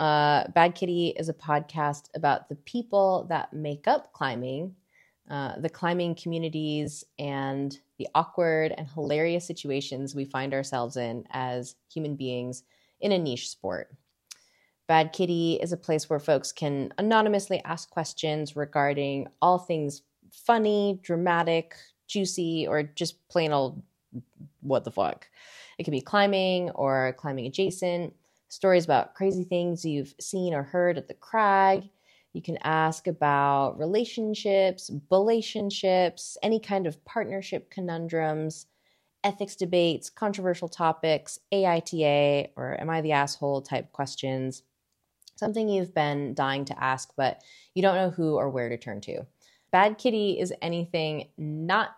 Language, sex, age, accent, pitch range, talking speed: English, female, 20-39, American, 145-185 Hz, 140 wpm